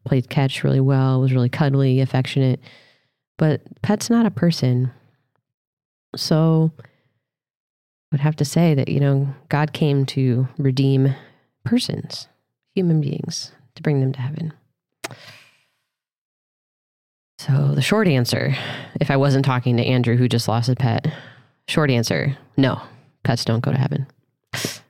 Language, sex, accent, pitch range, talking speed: English, female, American, 130-150 Hz, 135 wpm